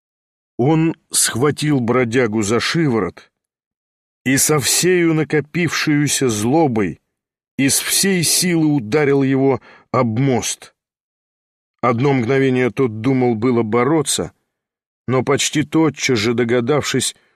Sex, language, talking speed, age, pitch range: male, English, 95 wpm, 40-59, 120-150 Hz